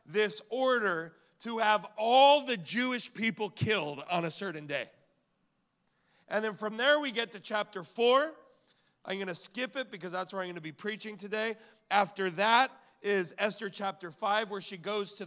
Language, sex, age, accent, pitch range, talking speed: English, male, 40-59, American, 175-215 Hz, 180 wpm